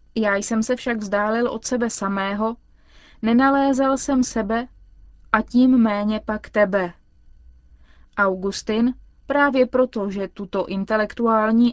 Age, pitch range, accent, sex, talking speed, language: 20-39, 200-240 Hz, native, female, 115 wpm, Czech